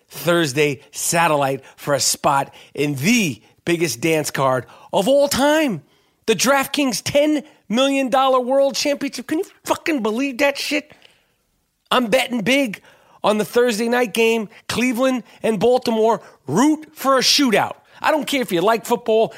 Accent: American